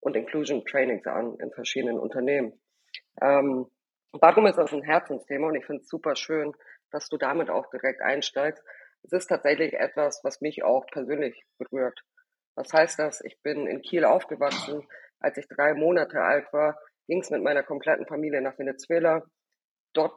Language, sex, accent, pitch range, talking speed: German, female, German, 140-160 Hz, 170 wpm